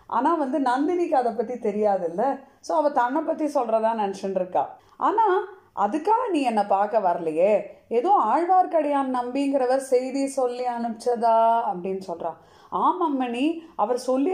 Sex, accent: female, native